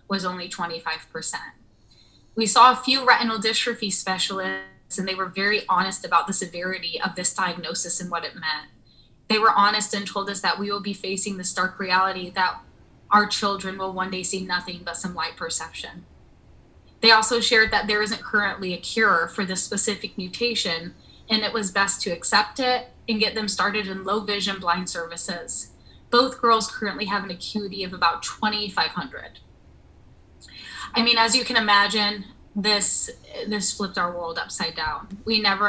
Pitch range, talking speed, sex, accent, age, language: 185-220 Hz, 175 wpm, female, American, 20-39, English